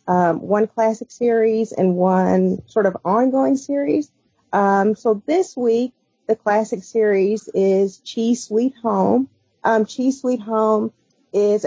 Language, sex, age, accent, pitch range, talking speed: English, female, 40-59, American, 195-235 Hz, 135 wpm